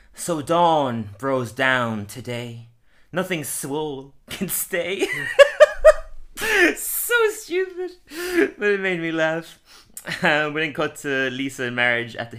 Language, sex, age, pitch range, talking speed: English, male, 20-39, 110-160 Hz, 125 wpm